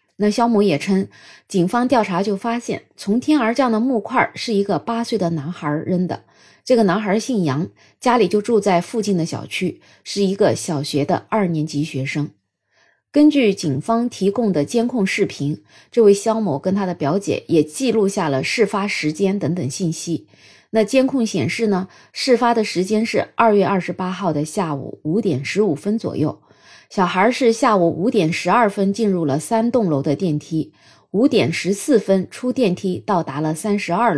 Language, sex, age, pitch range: Chinese, female, 20-39, 165-230 Hz